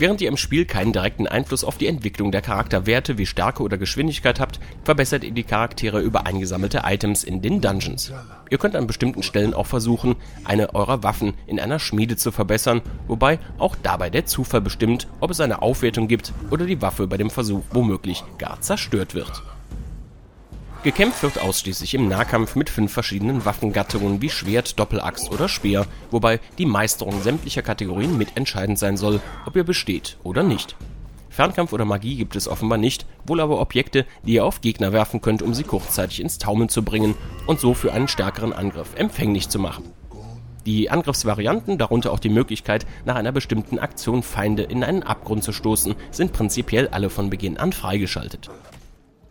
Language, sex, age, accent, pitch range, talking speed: German, male, 30-49, German, 100-125 Hz, 175 wpm